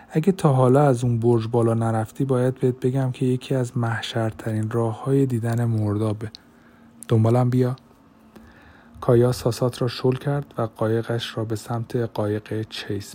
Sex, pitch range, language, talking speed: male, 115-130 Hz, Persian, 150 wpm